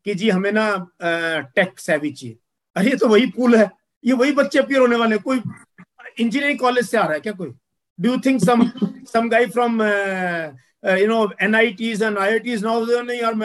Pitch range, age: 165-225 Hz, 50-69